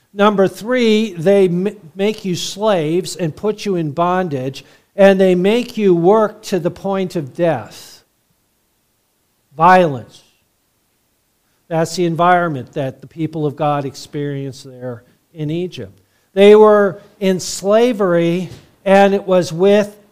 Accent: American